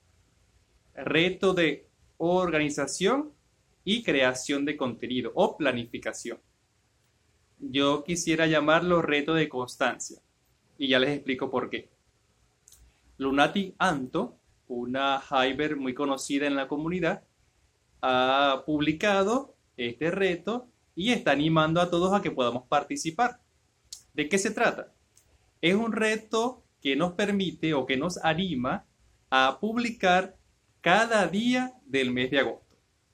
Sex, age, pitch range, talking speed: male, 30-49, 130-190 Hz, 120 wpm